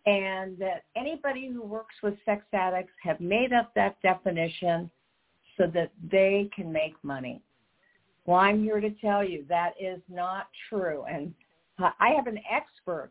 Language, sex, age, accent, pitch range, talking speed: English, female, 50-69, American, 175-225 Hz, 160 wpm